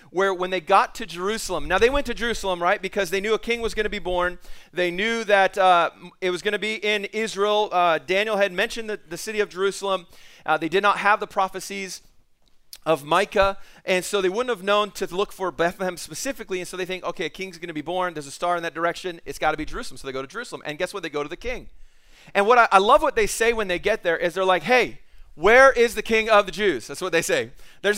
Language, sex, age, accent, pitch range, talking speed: English, male, 30-49, American, 175-215 Hz, 260 wpm